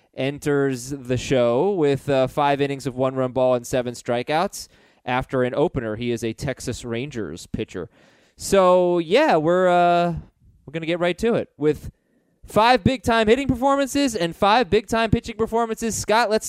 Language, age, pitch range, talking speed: English, 20-39, 130-185 Hz, 165 wpm